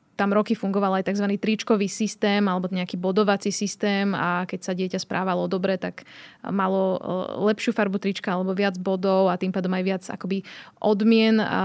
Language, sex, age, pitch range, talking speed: Slovak, female, 20-39, 185-215 Hz, 165 wpm